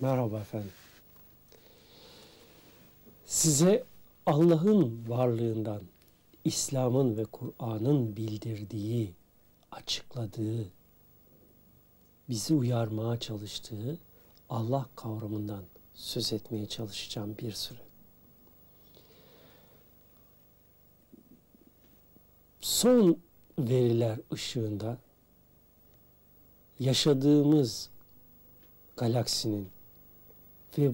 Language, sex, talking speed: Turkish, male, 50 wpm